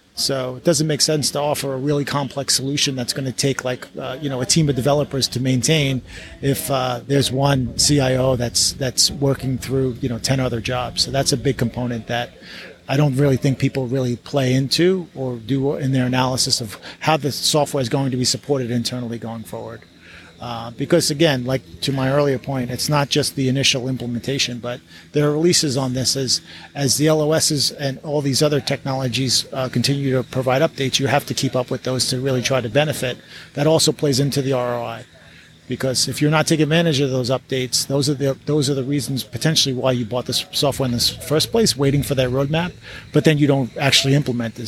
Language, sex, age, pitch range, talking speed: English, male, 40-59, 125-145 Hz, 215 wpm